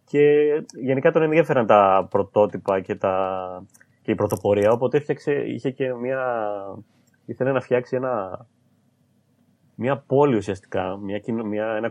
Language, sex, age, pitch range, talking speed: Greek, male, 20-39, 100-125 Hz, 115 wpm